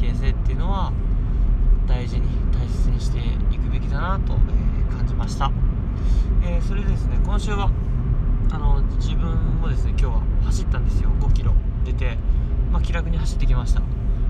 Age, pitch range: 20-39, 65-100 Hz